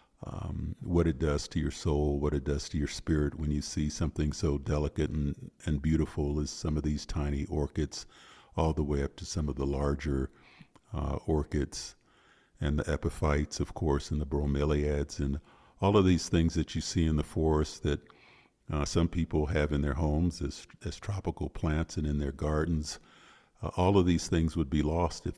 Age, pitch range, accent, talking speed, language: 50-69, 75-85 Hz, American, 195 wpm, English